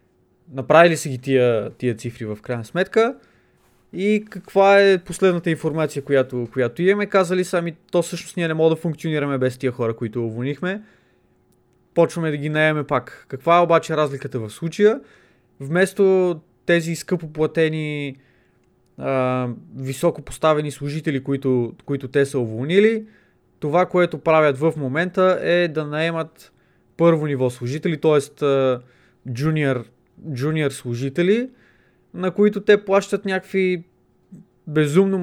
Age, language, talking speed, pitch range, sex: 20-39, Bulgarian, 130 wpm, 130-170 Hz, male